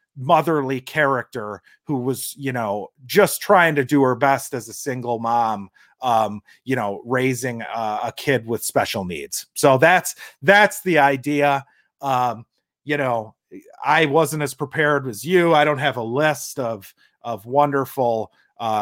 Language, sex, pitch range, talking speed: English, male, 125-155 Hz, 155 wpm